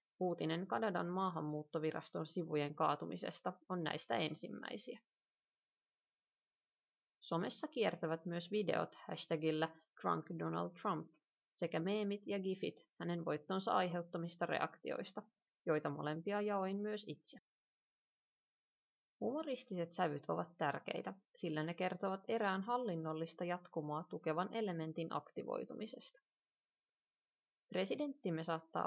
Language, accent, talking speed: Finnish, native, 90 wpm